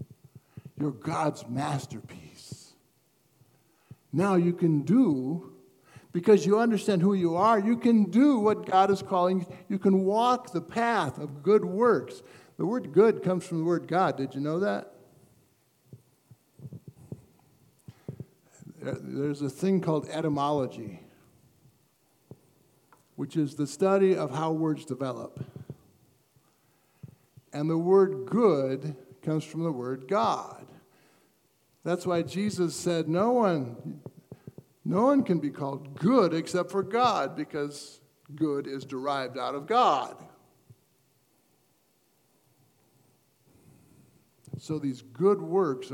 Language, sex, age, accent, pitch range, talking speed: English, male, 60-79, American, 135-185 Hz, 115 wpm